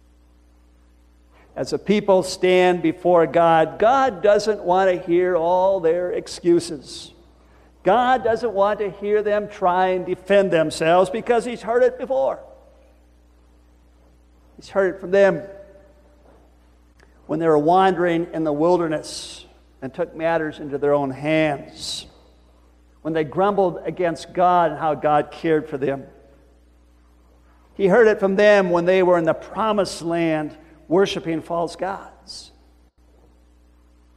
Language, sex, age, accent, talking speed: English, male, 50-69, American, 130 wpm